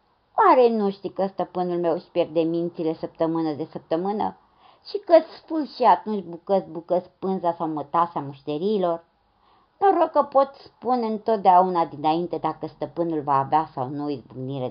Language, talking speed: Romanian, 165 wpm